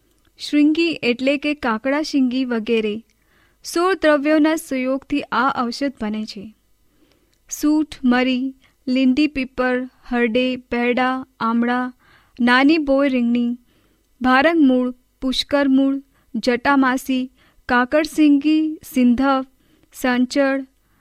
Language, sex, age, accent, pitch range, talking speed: Hindi, female, 20-39, native, 245-295 Hz, 75 wpm